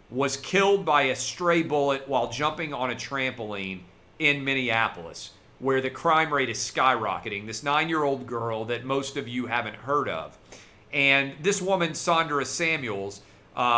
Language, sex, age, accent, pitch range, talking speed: English, male, 40-59, American, 115-155 Hz, 150 wpm